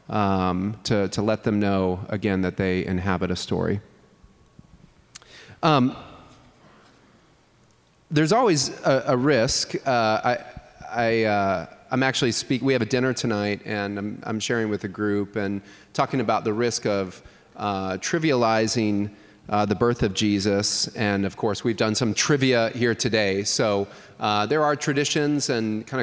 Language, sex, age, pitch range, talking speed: English, male, 30-49, 100-130 Hz, 150 wpm